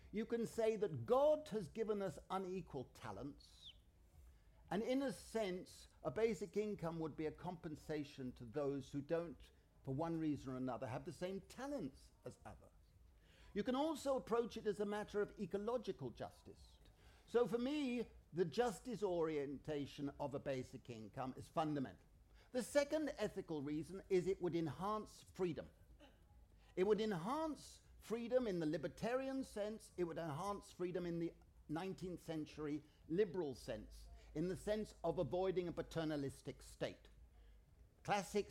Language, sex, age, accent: English, male, 50-69, British